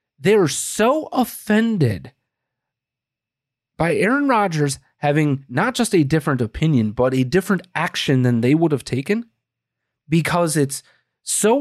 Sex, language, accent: male, English, American